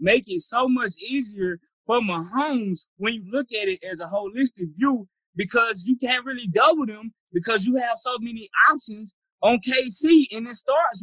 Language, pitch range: English, 180-255 Hz